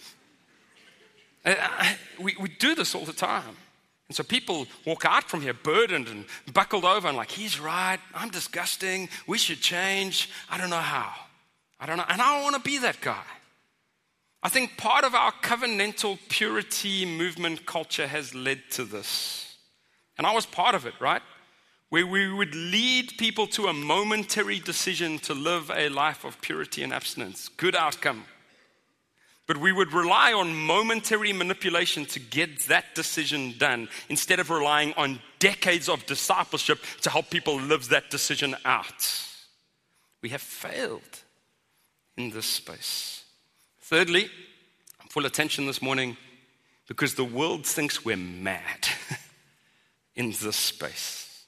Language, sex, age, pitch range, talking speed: English, male, 40-59, 150-200 Hz, 150 wpm